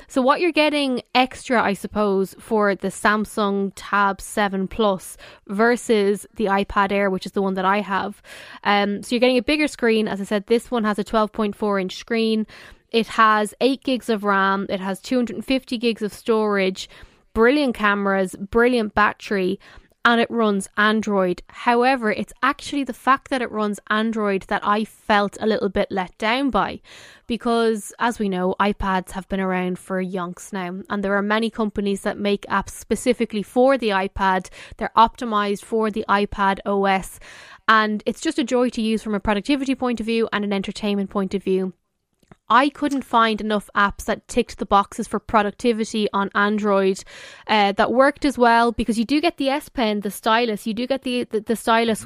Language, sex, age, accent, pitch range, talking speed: English, female, 10-29, Irish, 200-235 Hz, 185 wpm